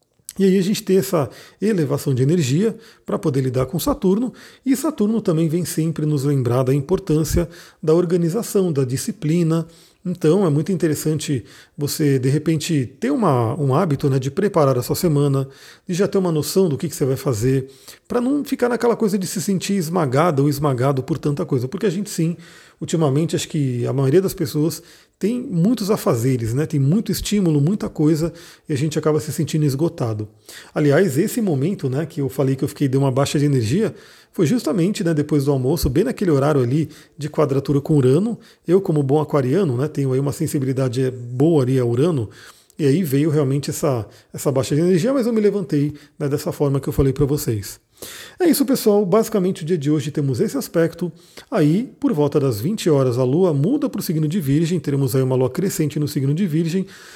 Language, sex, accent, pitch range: Portuguese, male, Brazilian, 140-185 Hz